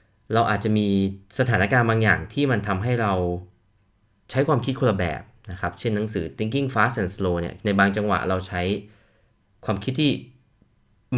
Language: Thai